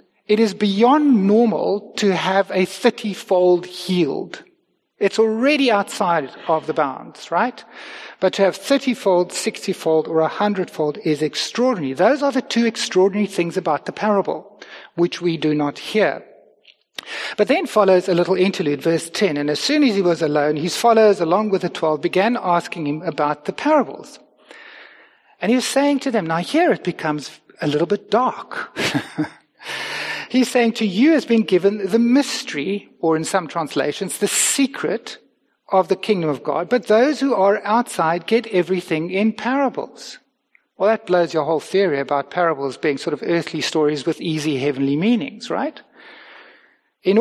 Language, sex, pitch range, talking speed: English, male, 165-225 Hz, 165 wpm